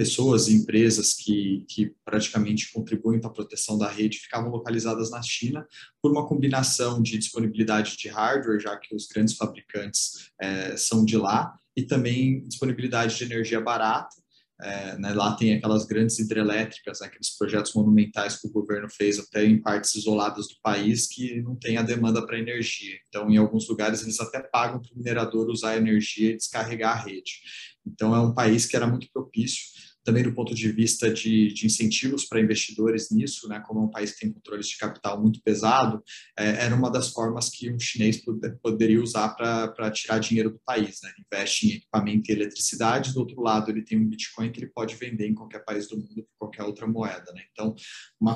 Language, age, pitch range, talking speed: Portuguese, 20-39, 110-120 Hz, 195 wpm